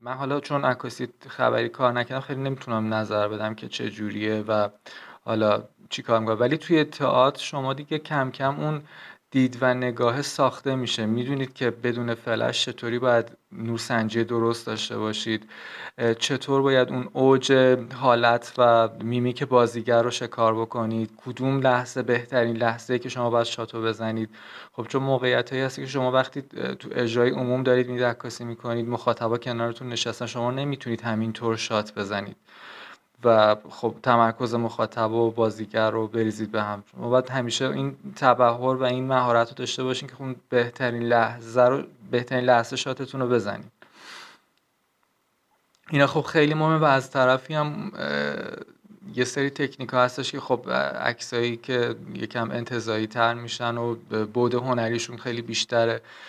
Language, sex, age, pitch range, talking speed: Persian, male, 20-39, 115-130 Hz, 150 wpm